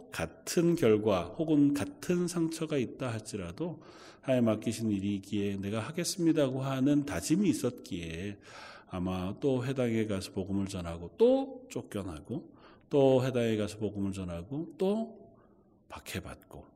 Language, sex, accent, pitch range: Korean, male, native, 105-140 Hz